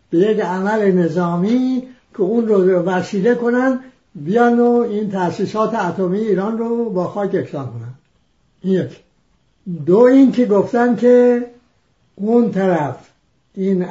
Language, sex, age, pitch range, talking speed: English, male, 60-79, 165-215 Hz, 125 wpm